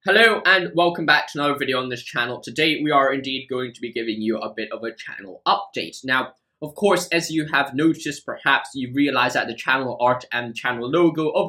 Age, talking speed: 10-29, 225 wpm